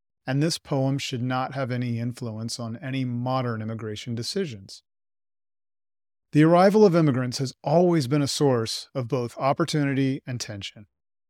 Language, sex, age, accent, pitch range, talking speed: English, male, 40-59, American, 110-145 Hz, 145 wpm